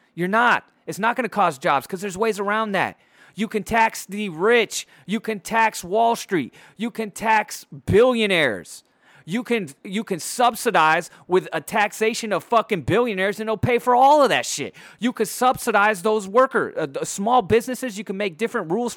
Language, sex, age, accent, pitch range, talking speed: English, male, 30-49, American, 180-235 Hz, 185 wpm